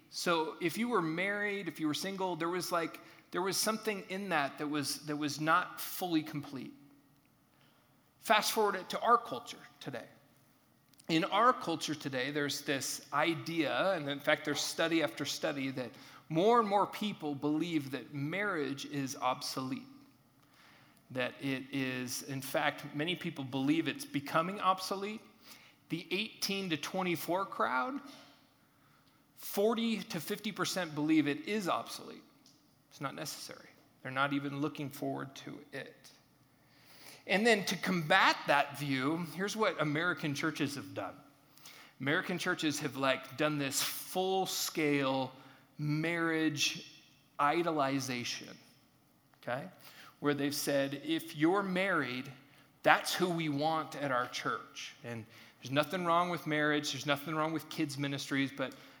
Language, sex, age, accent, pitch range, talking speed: English, male, 40-59, American, 140-185 Hz, 140 wpm